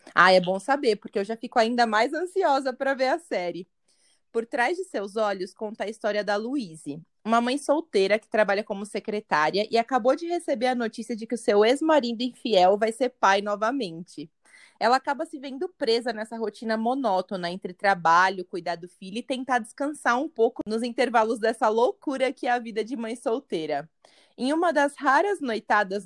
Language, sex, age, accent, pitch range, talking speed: Portuguese, female, 20-39, Brazilian, 210-265 Hz, 190 wpm